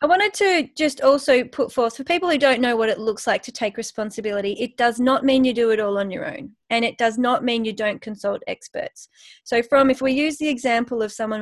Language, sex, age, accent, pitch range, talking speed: English, female, 30-49, Australian, 215-260 Hz, 250 wpm